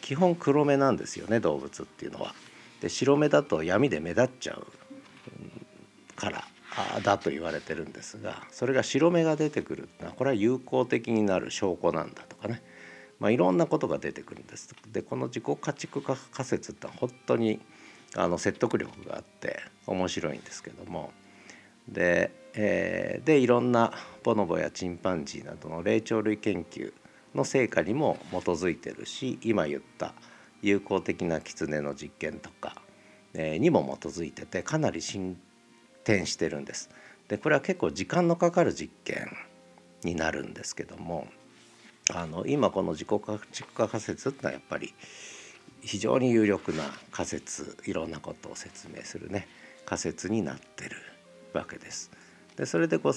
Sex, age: male, 50-69